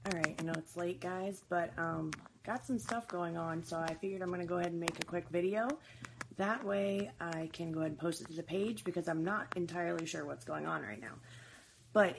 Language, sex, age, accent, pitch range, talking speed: English, female, 30-49, American, 135-185 Hz, 245 wpm